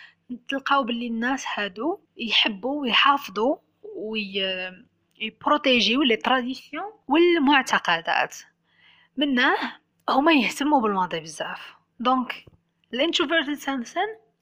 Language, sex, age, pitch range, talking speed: English, female, 20-39, 220-290 Hz, 75 wpm